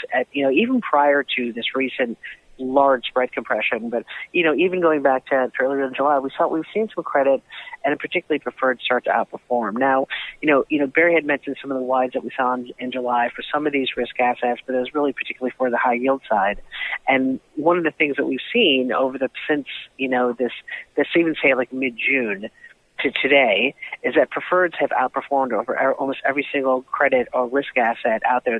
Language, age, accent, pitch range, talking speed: English, 40-59, American, 125-145 Hz, 220 wpm